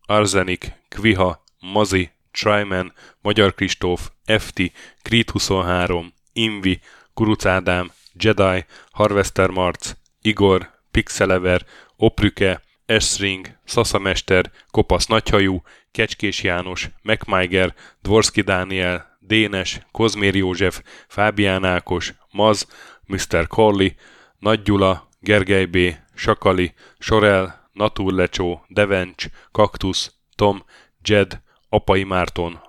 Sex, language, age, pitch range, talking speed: male, Hungarian, 10-29, 90-105 Hz, 85 wpm